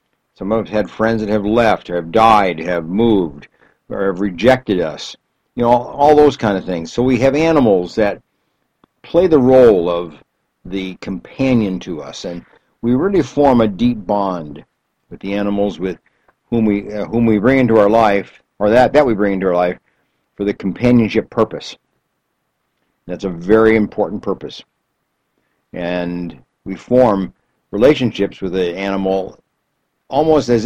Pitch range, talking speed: 95-125 Hz, 165 wpm